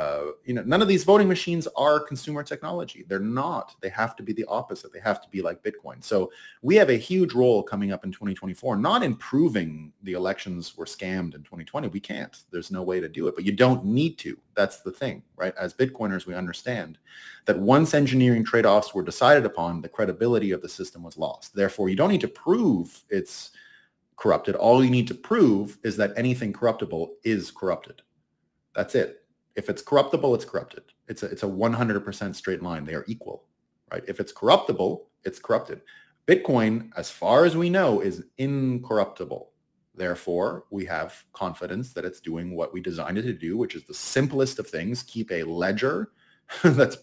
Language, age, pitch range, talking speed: English, 30-49, 90-130 Hz, 190 wpm